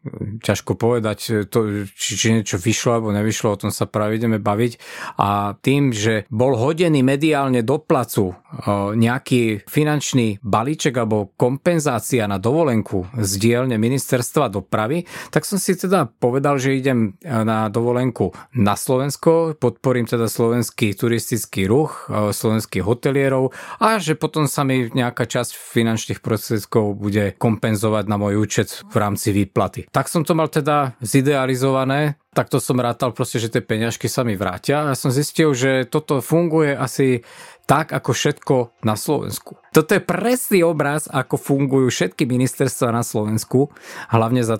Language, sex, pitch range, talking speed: Slovak, male, 110-145 Hz, 150 wpm